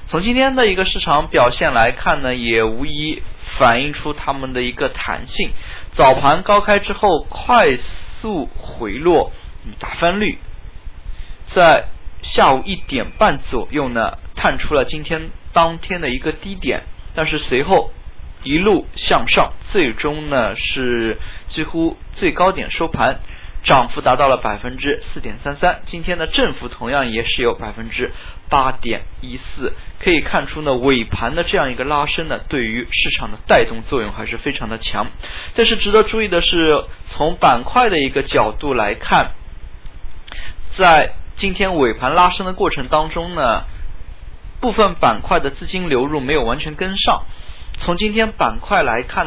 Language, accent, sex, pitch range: Chinese, native, male, 115-175 Hz